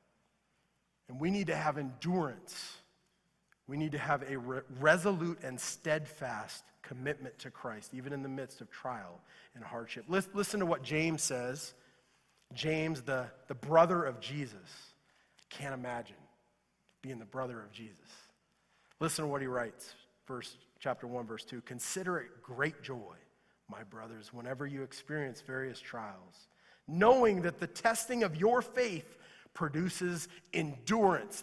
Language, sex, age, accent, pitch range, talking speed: English, male, 30-49, American, 135-215 Hz, 145 wpm